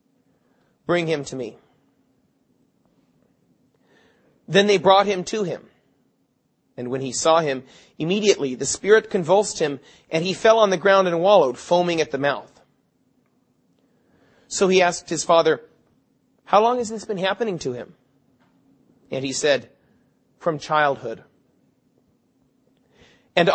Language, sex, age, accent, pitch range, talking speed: English, male, 30-49, American, 160-205 Hz, 130 wpm